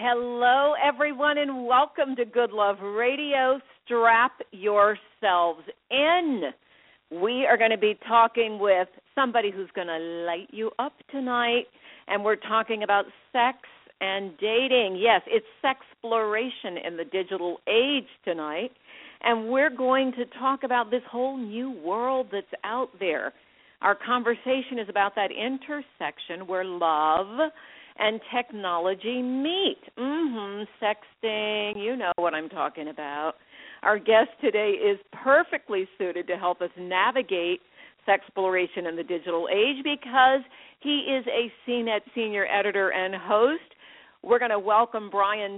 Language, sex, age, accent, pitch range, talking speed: English, female, 50-69, American, 200-265 Hz, 140 wpm